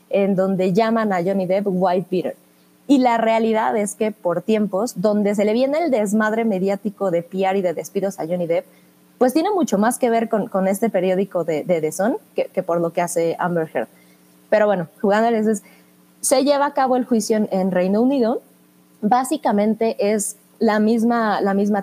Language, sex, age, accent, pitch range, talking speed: Spanish, female, 20-39, Mexican, 180-230 Hz, 195 wpm